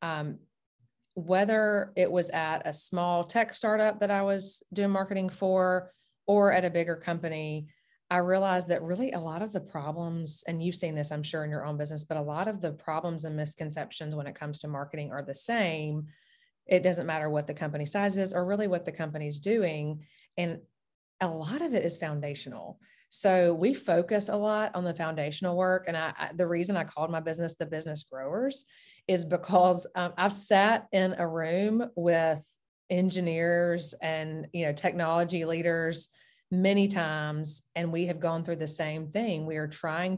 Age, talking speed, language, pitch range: 30-49, 185 wpm, English, 155-185 Hz